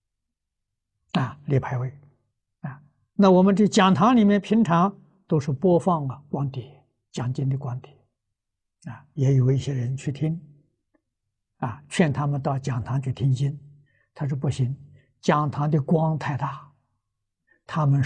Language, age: Chinese, 60-79